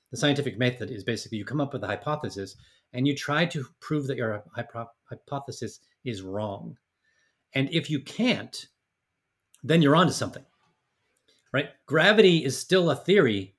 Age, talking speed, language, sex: 40-59, 165 wpm, English, male